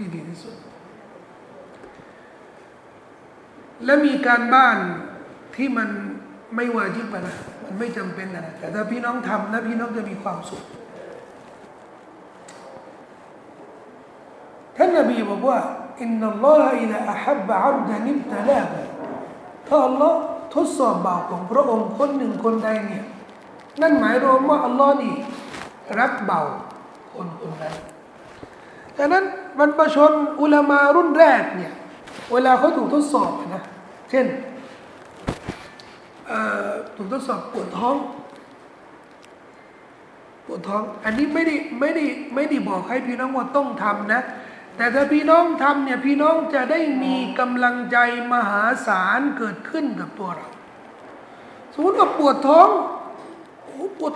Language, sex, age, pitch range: Thai, male, 60-79, 230-305 Hz